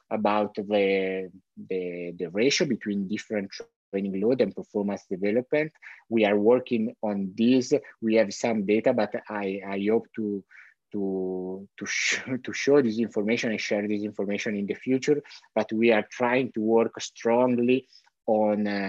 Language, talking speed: English, 140 wpm